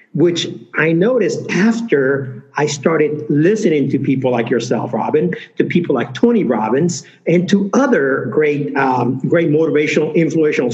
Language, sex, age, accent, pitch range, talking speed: English, male, 50-69, American, 145-200 Hz, 140 wpm